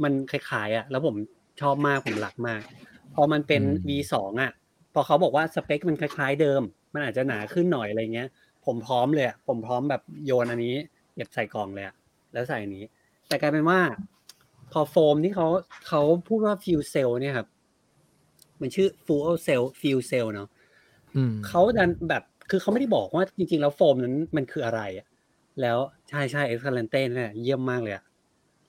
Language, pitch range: English, 125-165 Hz